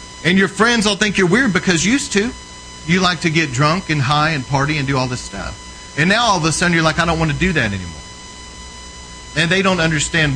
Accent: American